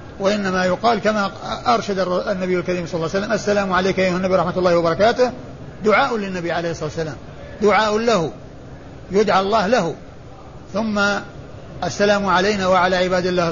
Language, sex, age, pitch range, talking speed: Arabic, male, 50-69, 160-205 Hz, 145 wpm